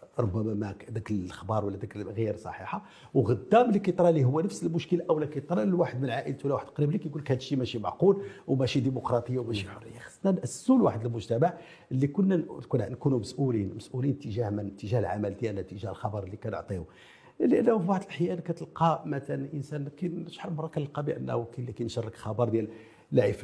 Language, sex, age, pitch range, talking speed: French, male, 50-69, 105-160 Hz, 175 wpm